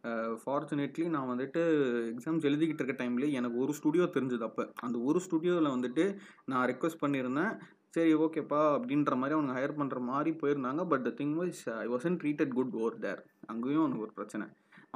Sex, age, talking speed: male, 20-39, 170 wpm